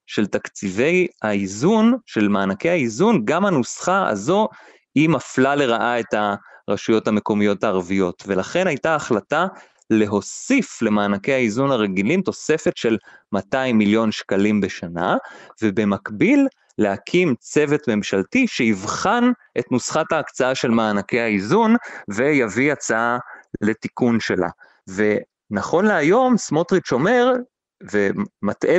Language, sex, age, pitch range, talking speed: Hebrew, male, 30-49, 105-170 Hz, 100 wpm